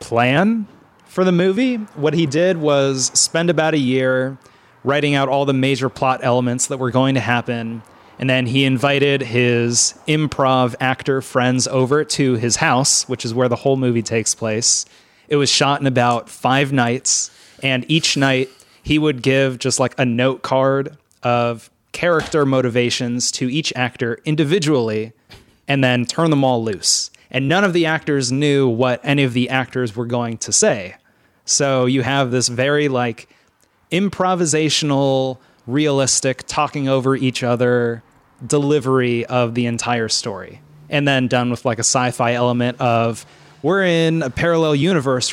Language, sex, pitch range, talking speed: English, male, 120-145 Hz, 160 wpm